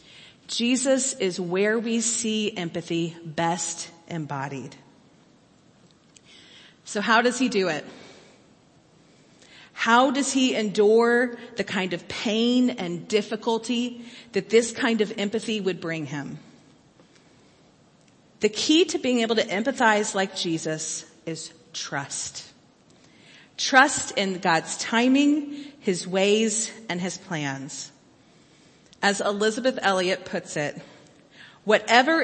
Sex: female